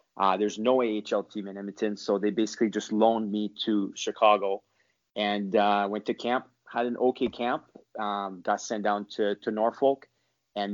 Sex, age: male, 20-39